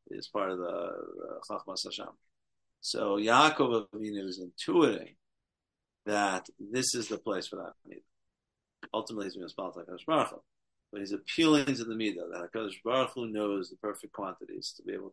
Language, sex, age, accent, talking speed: English, male, 50-69, American, 165 wpm